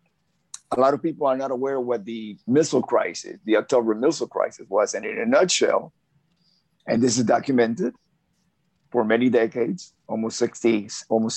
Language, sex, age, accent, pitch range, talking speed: English, male, 50-69, American, 115-165 Hz, 165 wpm